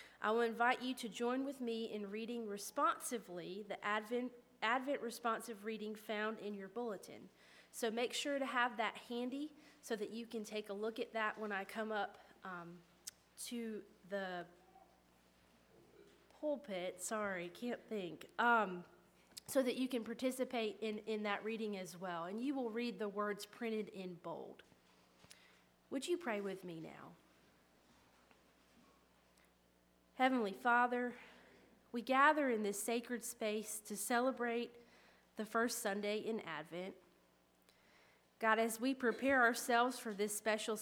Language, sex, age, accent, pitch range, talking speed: English, female, 30-49, American, 185-235 Hz, 145 wpm